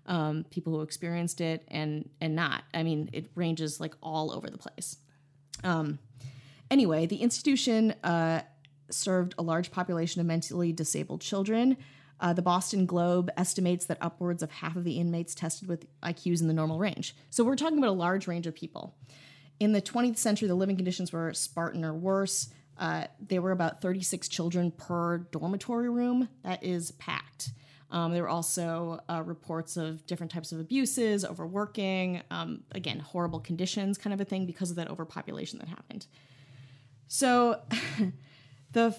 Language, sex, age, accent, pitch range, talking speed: English, female, 30-49, American, 160-195 Hz, 170 wpm